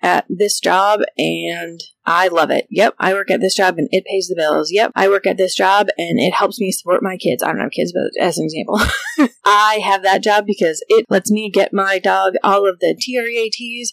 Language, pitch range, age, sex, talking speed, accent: English, 175-225 Hz, 30-49, female, 235 wpm, American